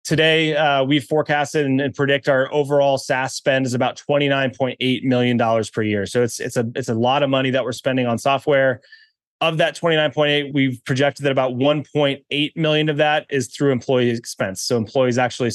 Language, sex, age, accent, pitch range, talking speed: English, male, 20-39, American, 125-145 Hz, 220 wpm